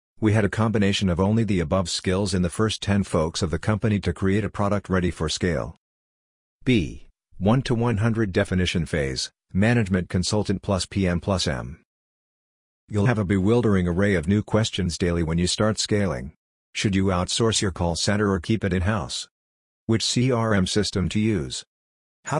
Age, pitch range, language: 50-69, 90-105 Hz, English